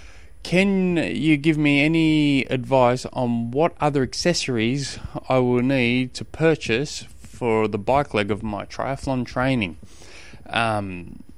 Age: 20-39